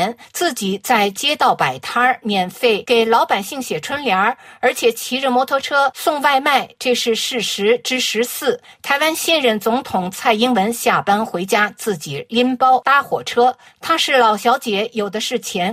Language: Chinese